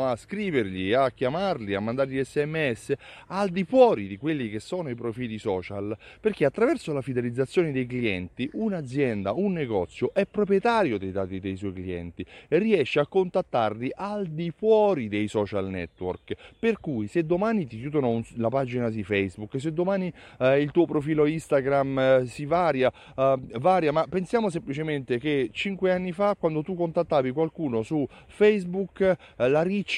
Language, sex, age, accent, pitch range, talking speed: Italian, male, 30-49, native, 120-170 Hz, 160 wpm